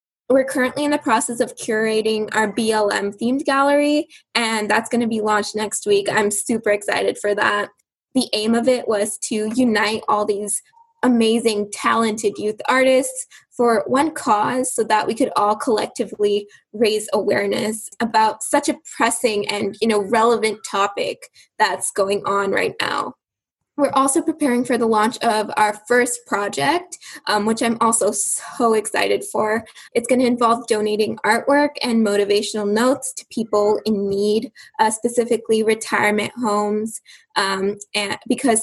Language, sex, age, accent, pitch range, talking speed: English, female, 10-29, American, 210-245 Hz, 150 wpm